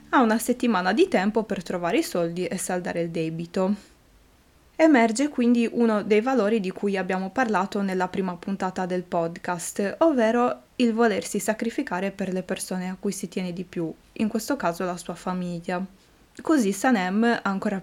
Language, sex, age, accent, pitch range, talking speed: Italian, female, 20-39, native, 185-235 Hz, 160 wpm